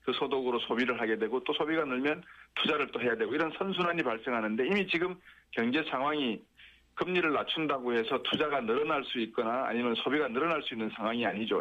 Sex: male